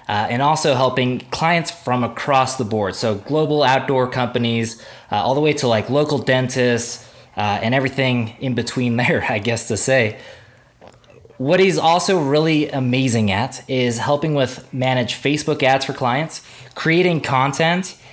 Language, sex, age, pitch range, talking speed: English, male, 20-39, 120-145 Hz, 155 wpm